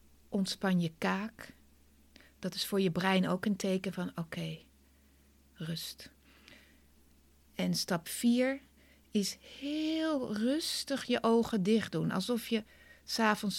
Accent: Dutch